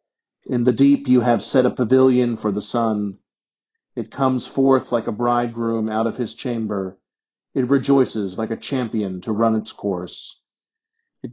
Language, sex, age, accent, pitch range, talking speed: English, male, 40-59, American, 110-130 Hz, 165 wpm